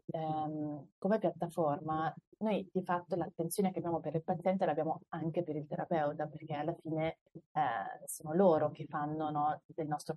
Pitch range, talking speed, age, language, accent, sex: 150-170 Hz, 155 wpm, 30-49, Italian, native, female